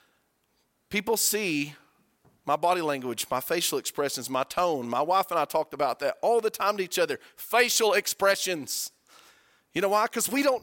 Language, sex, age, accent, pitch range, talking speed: English, male, 40-59, American, 150-215 Hz, 175 wpm